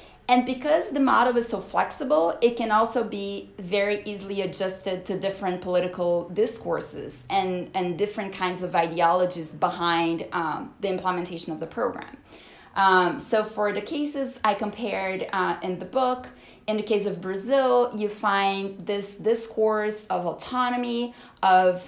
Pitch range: 185-230 Hz